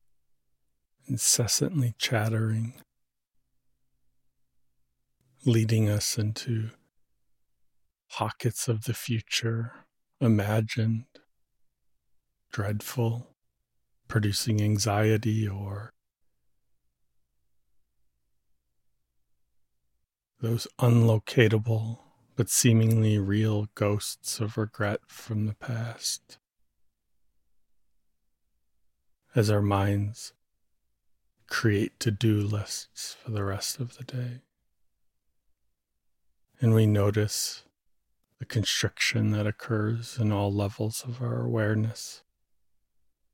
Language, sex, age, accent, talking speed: English, male, 40-59, American, 70 wpm